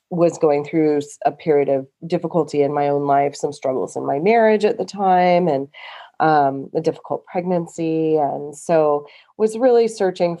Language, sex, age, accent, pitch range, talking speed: English, female, 30-49, American, 145-175 Hz, 165 wpm